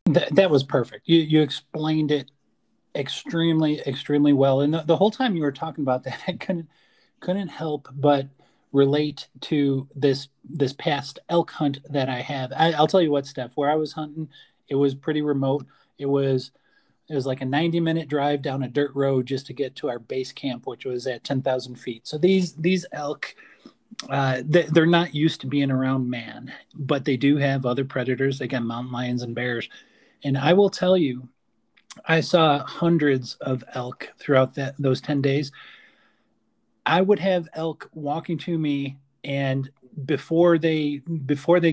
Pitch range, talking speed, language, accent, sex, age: 135-160 Hz, 185 wpm, English, American, male, 30-49